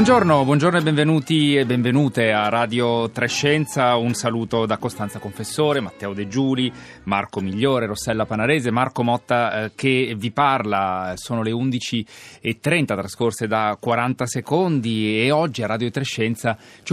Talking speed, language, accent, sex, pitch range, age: 145 wpm, Italian, native, male, 100-125 Hz, 30-49